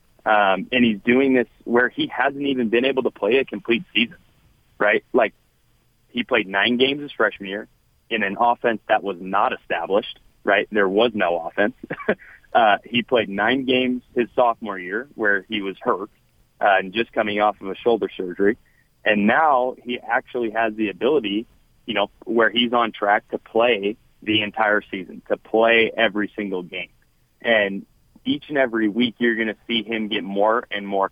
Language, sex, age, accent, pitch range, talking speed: English, male, 30-49, American, 100-120 Hz, 185 wpm